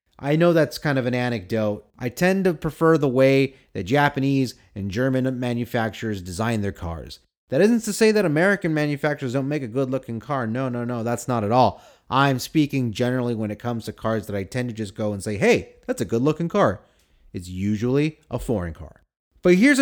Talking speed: 210 wpm